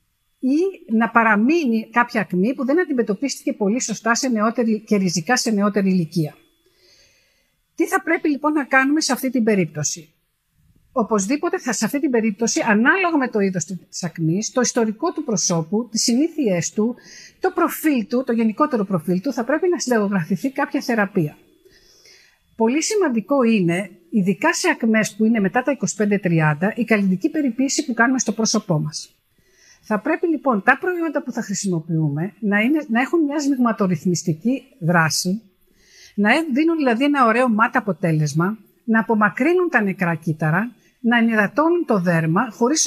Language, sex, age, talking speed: Greek, female, 50-69, 155 wpm